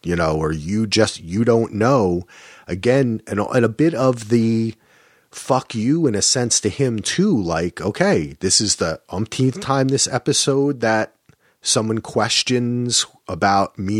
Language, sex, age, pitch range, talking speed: English, male, 30-49, 95-120 Hz, 160 wpm